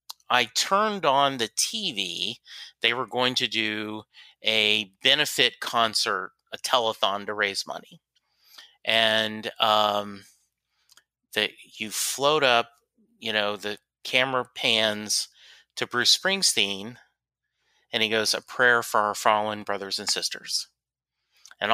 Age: 30-49